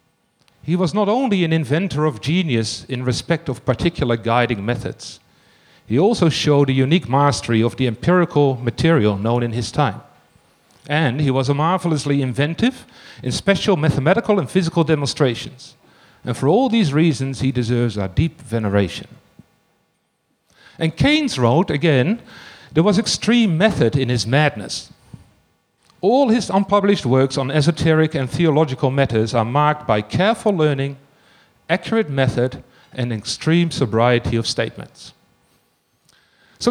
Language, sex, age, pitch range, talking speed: English, male, 40-59, 120-170 Hz, 135 wpm